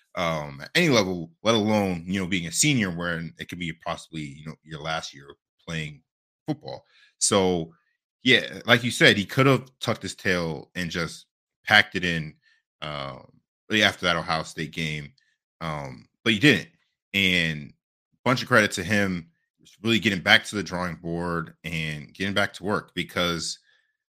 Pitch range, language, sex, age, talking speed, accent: 80-105 Hz, English, male, 20-39, 180 wpm, American